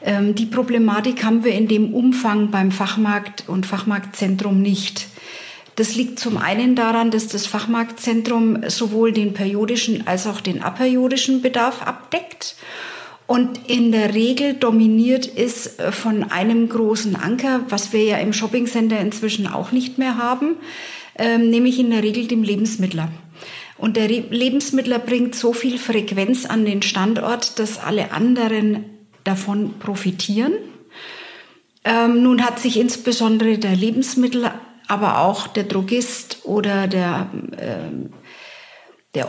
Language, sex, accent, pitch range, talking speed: German, female, German, 210-245 Hz, 135 wpm